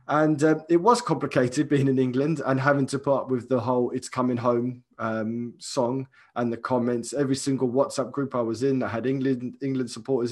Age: 20-39